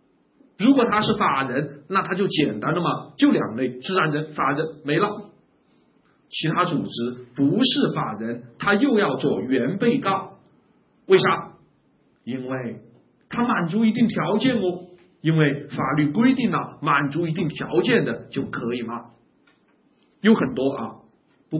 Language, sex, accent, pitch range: Chinese, male, native, 145-230 Hz